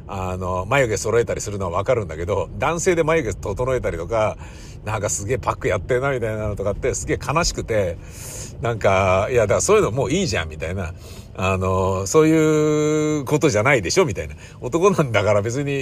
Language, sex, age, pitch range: Japanese, male, 50-69, 100-160 Hz